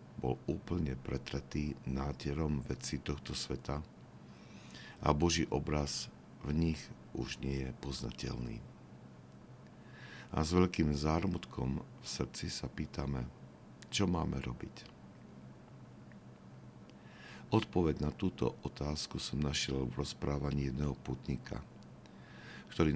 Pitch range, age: 65-80 Hz, 50-69